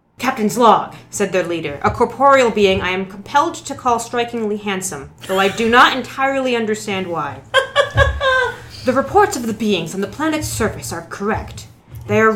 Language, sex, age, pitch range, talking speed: English, female, 20-39, 185-235 Hz, 170 wpm